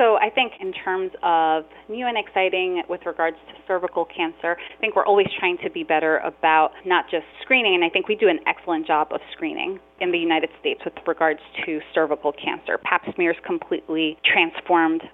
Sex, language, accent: female, English, American